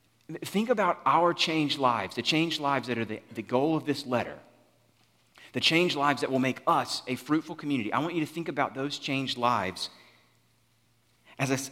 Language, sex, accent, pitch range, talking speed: English, male, American, 120-165 Hz, 185 wpm